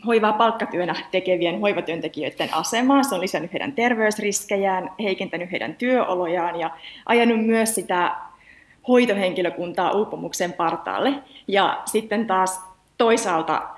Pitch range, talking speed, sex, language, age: 170-230 Hz, 105 wpm, female, Finnish, 30-49